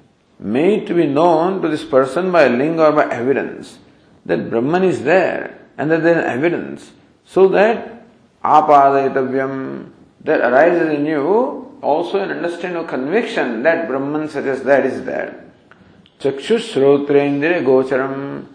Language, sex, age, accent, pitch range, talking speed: English, male, 50-69, Indian, 135-170 Hz, 140 wpm